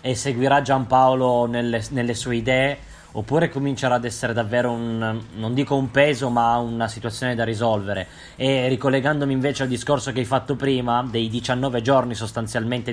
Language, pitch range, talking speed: Italian, 120-145 Hz, 160 wpm